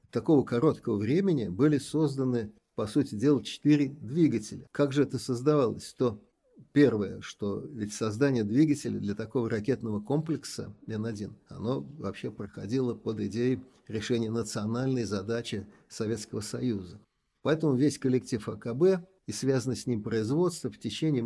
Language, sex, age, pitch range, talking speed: Russian, male, 50-69, 115-145 Hz, 135 wpm